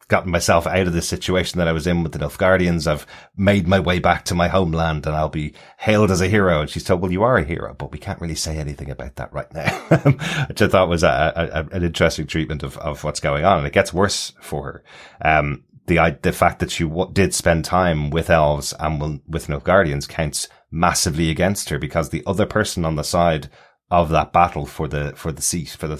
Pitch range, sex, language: 75-90 Hz, male, English